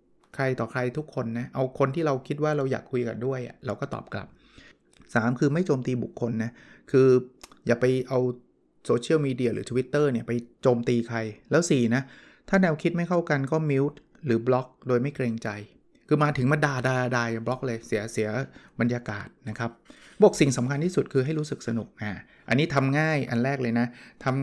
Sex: male